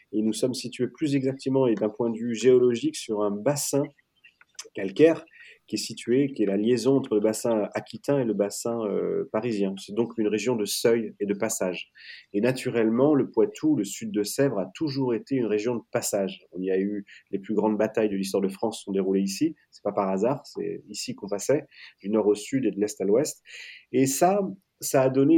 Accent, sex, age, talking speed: French, male, 30-49, 225 wpm